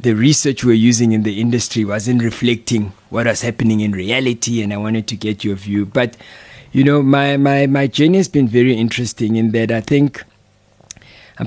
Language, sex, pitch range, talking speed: English, male, 105-120 Hz, 190 wpm